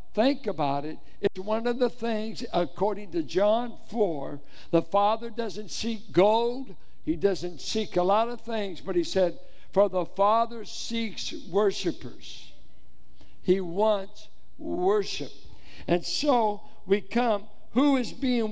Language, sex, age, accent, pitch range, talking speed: English, male, 60-79, American, 180-225 Hz, 135 wpm